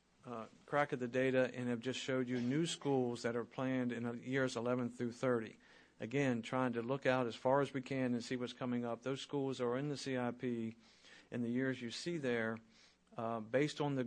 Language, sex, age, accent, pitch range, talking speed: English, male, 50-69, American, 115-130 Hz, 220 wpm